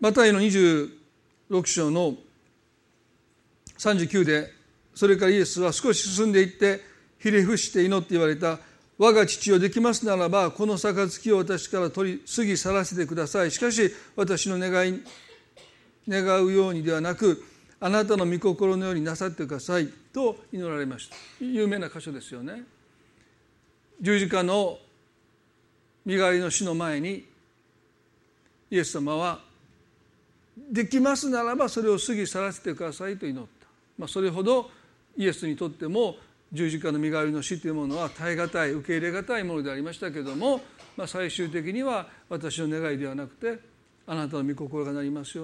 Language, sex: Japanese, male